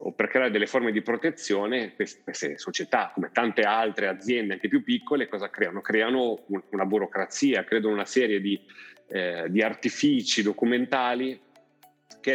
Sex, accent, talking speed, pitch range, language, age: male, native, 145 wpm, 95-115 Hz, Italian, 30-49